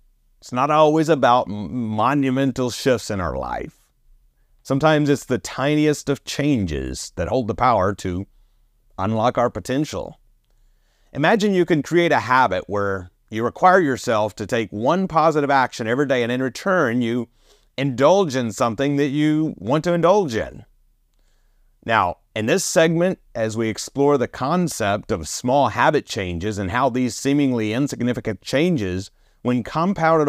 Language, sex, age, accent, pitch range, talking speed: English, male, 30-49, American, 110-150 Hz, 145 wpm